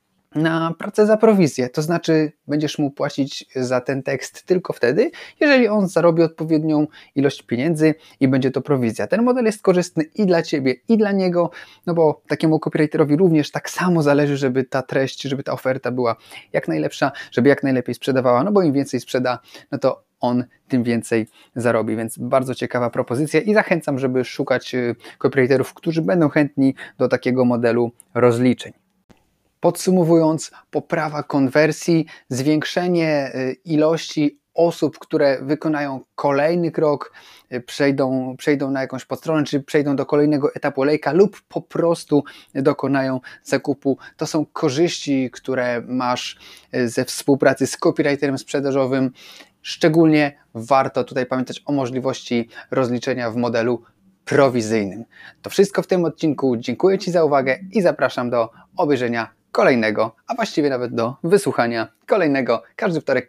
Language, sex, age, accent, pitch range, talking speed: Polish, male, 30-49, native, 125-160 Hz, 140 wpm